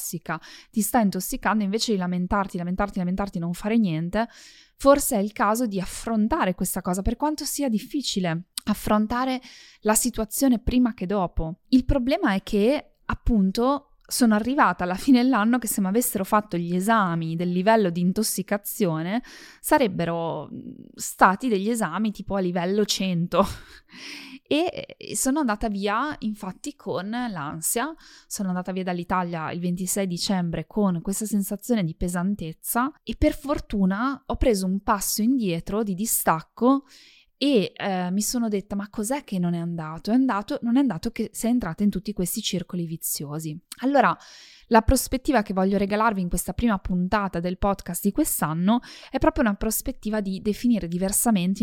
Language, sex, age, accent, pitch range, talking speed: Italian, female, 20-39, native, 180-235 Hz, 155 wpm